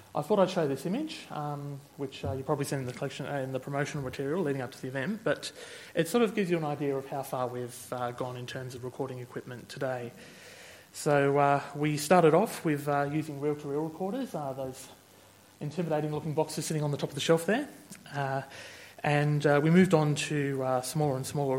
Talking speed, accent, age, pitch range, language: 215 wpm, Australian, 30-49, 130-155 Hz, English